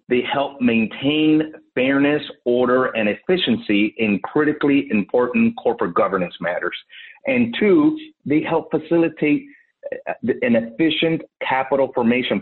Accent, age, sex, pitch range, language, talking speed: American, 40-59, male, 125-185 Hz, English, 105 wpm